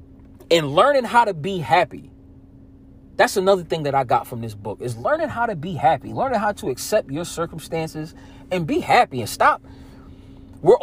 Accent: American